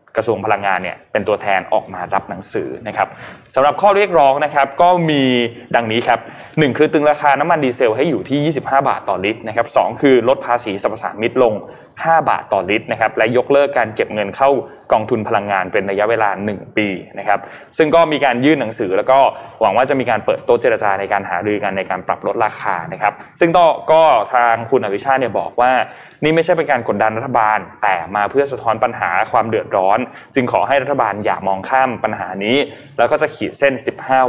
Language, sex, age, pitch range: Thai, male, 20-39, 110-150 Hz